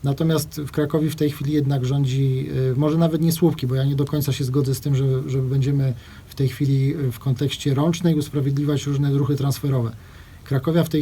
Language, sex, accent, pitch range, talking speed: Polish, male, native, 130-160 Hz, 200 wpm